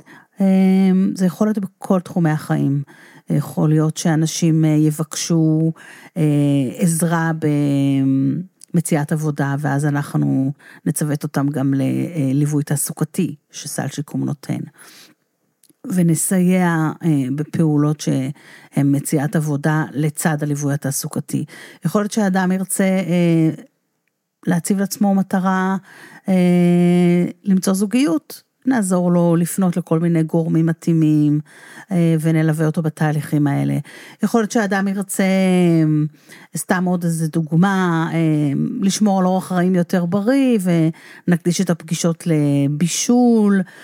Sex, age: female, 40-59